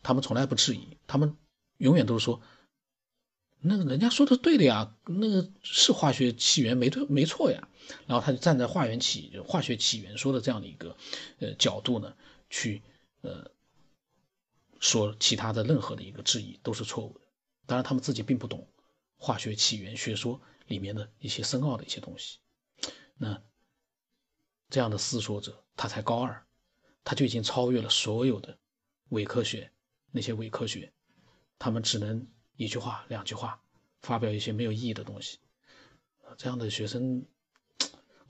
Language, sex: Chinese, male